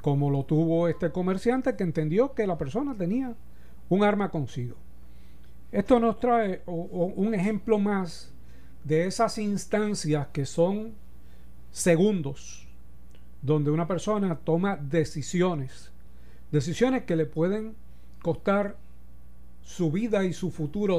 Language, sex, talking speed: Spanish, male, 115 wpm